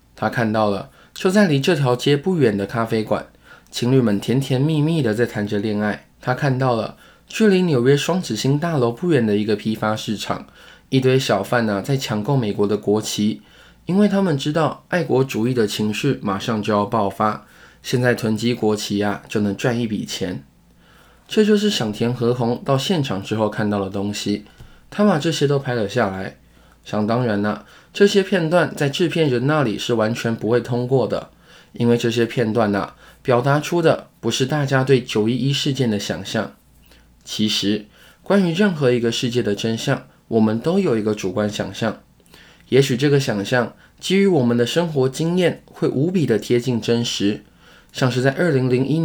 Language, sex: Chinese, male